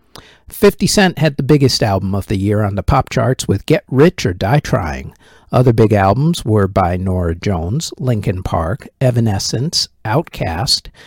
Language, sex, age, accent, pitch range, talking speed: English, male, 50-69, American, 110-150 Hz, 165 wpm